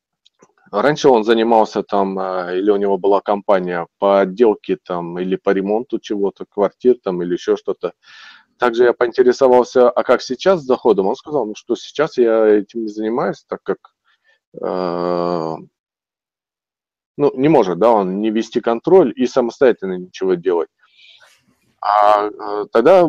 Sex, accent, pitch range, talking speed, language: male, native, 105-155 Hz, 140 wpm, Russian